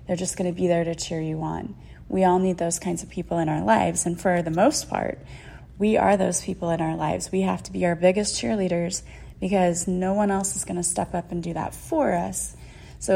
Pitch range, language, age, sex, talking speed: 170-200 Hz, English, 30-49, female, 245 wpm